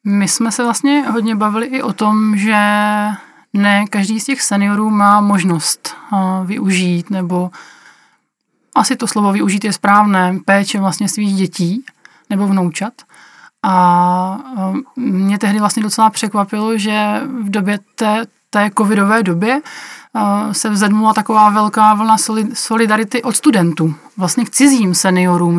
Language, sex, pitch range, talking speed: Czech, male, 200-225 Hz, 130 wpm